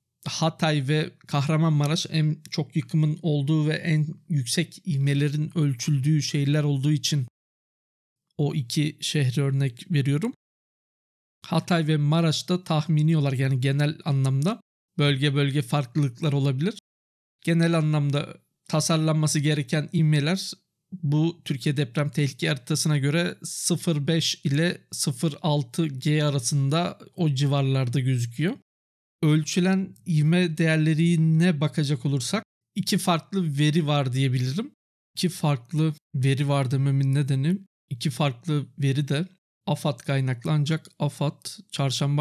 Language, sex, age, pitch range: Turkish, male, 50-69, 145-165 Hz